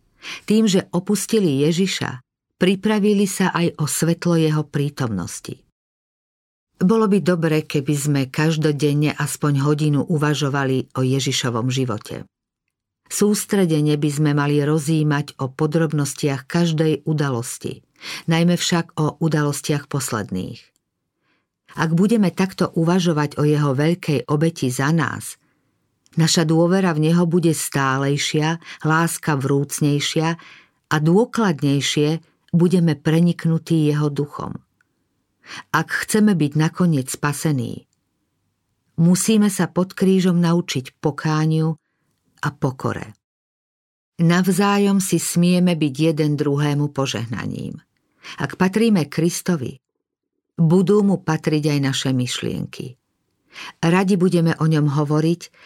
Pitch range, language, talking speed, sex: 140-175 Hz, Slovak, 100 wpm, female